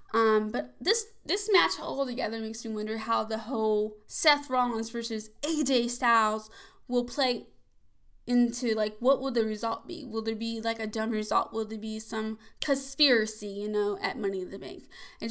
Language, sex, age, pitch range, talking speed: English, female, 10-29, 220-270 Hz, 185 wpm